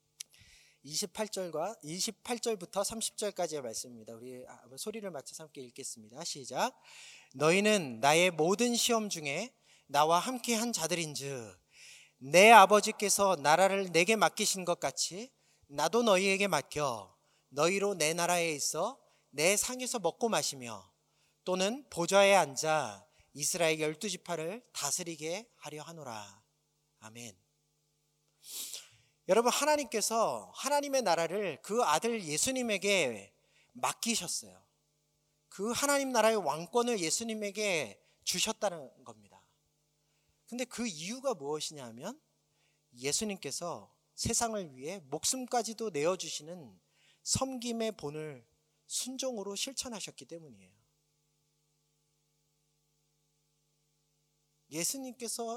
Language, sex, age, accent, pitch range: Korean, male, 30-49, native, 145-220 Hz